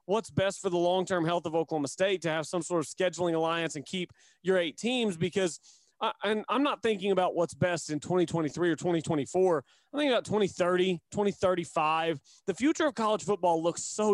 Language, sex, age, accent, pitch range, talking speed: English, male, 30-49, American, 165-210 Hz, 195 wpm